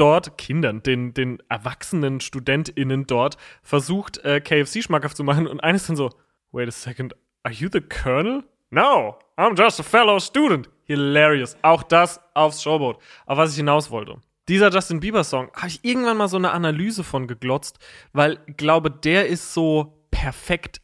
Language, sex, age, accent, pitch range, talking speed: German, male, 30-49, German, 135-165 Hz, 170 wpm